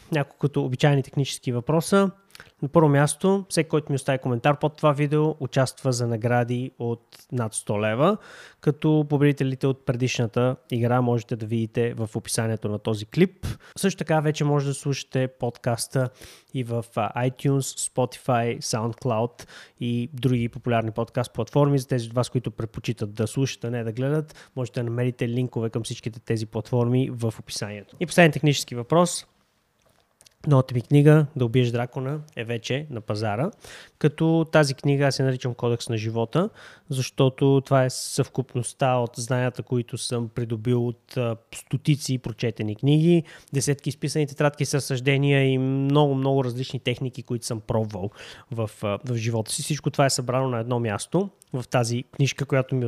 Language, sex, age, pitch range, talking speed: Bulgarian, male, 20-39, 120-145 Hz, 155 wpm